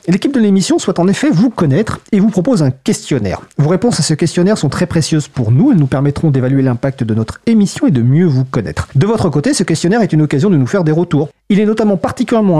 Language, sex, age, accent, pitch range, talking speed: French, male, 40-59, French, 145-210 Hz, 250 wpm